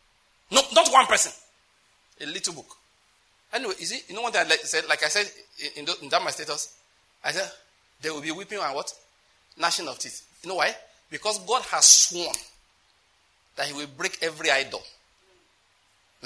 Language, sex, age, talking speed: English, male, 40-59, 180 wpm